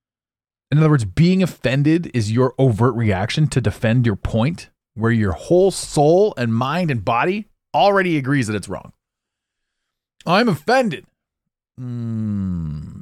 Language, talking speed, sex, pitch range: English, 135 wpm, male, 100-135 Hz